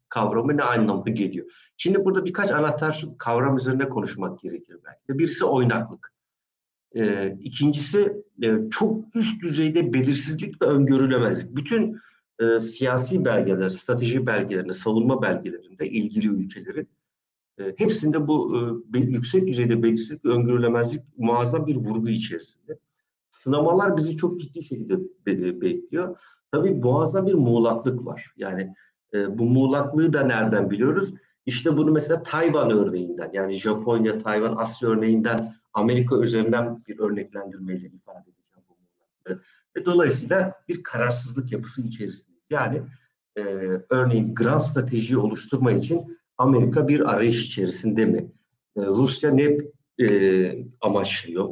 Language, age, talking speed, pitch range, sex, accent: Turkish, 60-79, 120 wpm, 110-150 Hz, male, native